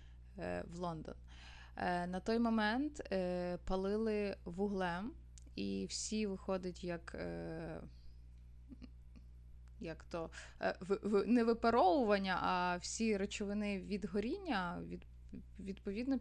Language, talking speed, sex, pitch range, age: Ukrainian, 75 wpm, female, 160-220 Hz, 20-39